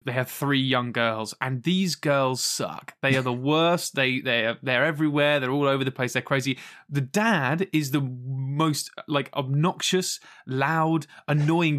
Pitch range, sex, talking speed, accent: 130-170 Hz, male, 175 wpm, British